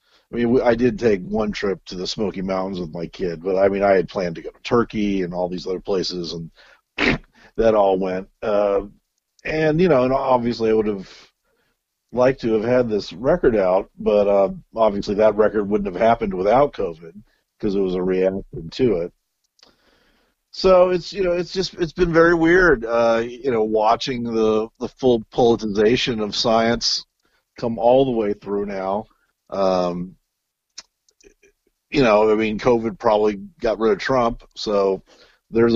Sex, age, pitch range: male, 50-69, 100-130 Hz